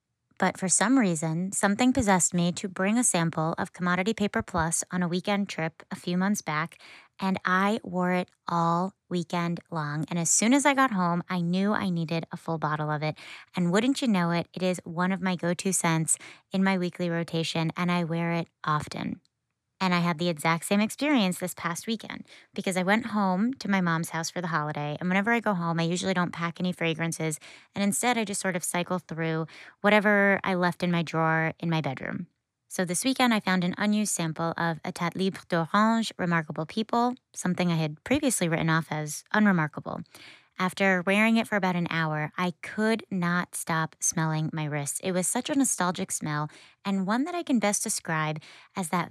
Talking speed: 205 wpm